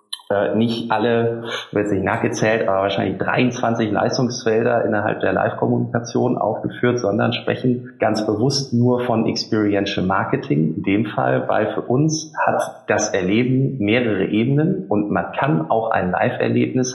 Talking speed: 135 wpm